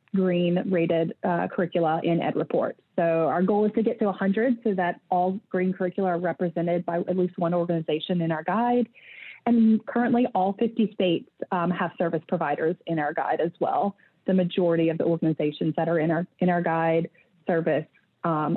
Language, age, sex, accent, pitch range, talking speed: English, 30-49, female, American, 170-220 Hz, 185 wpm